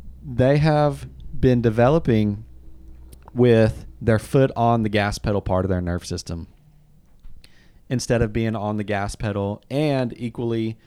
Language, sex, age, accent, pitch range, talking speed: English, male, 30-49, American, 105-125 Hz, 140 wpm